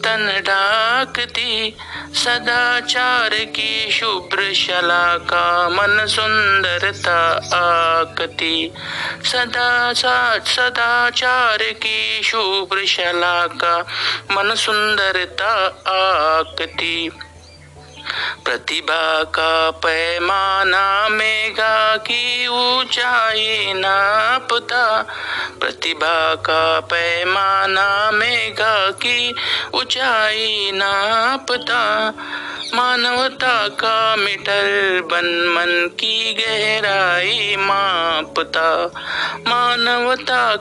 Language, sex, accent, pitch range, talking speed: Marathi, male, native, 175-225 Hz, 55 wpm